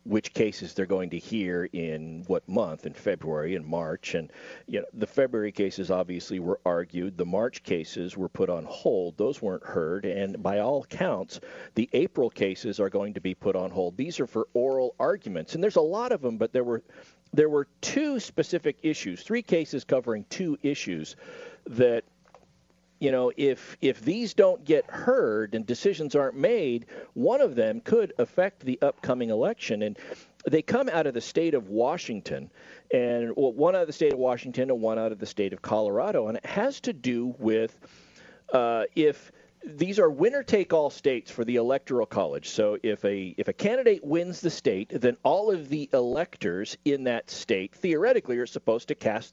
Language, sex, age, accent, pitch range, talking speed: English, male, 50-69, American, 105-170 Hz, 185 wpm